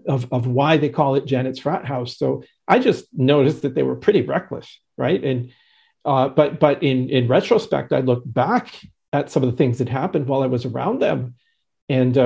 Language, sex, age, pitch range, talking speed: English, male, 50-69, 130-155 Hz, 205 wpm